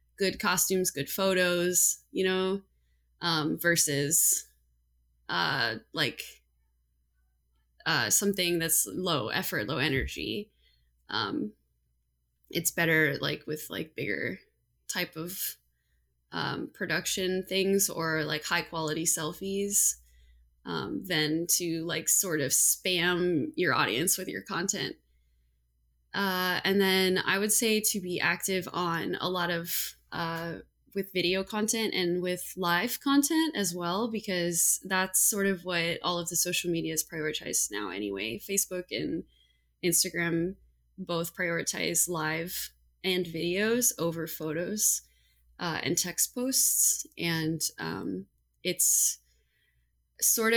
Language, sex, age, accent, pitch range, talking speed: English, female, 20-39, American, 130-190 Hz, 120 wpm